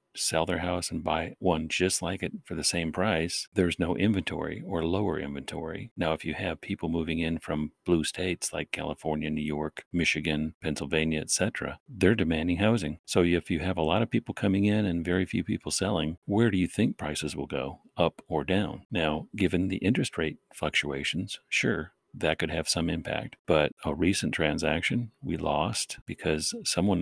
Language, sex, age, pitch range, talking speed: English, male, 40-59, 80-95 Hz, 185 wpm